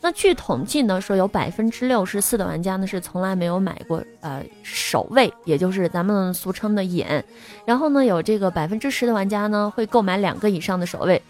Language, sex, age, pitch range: Chinese, female, 20-39, 185-250 Hz